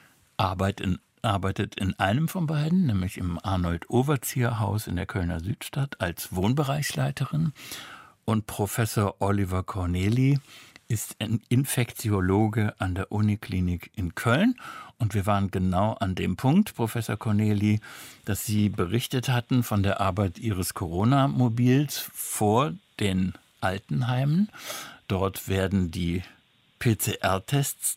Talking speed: 115 wpm